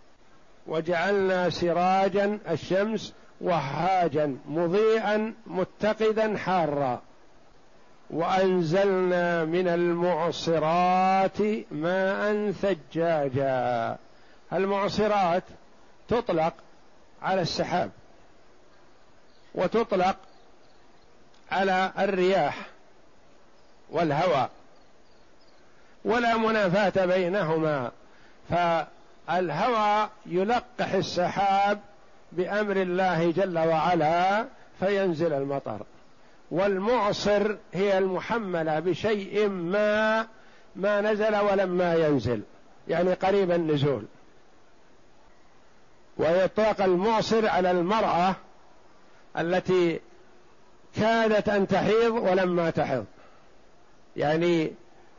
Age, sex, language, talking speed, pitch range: 50-69, male, Arabic, 60 wpm, 170-205 Hz